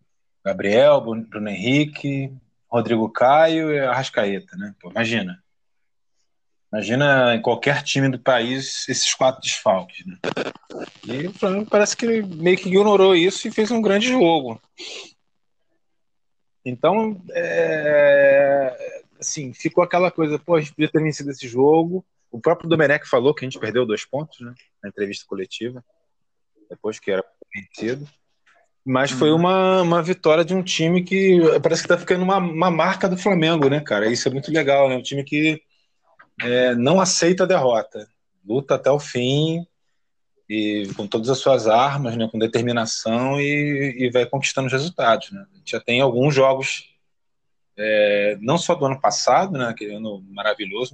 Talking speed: 155 wpm